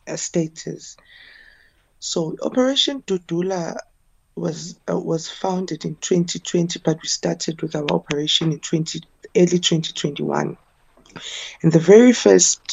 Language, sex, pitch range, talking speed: English, female, 155-185 Hz, 120 wpm